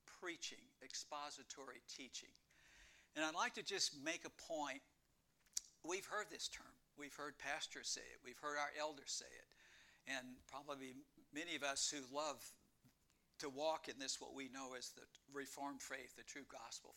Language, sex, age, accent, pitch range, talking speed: English, male, 60-79, American, 140-205 Hz, 165 wpm